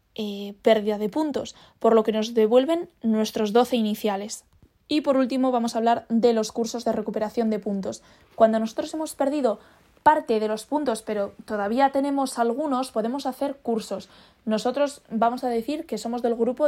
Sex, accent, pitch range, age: female, Spanish, 220-265 Hz, 20-39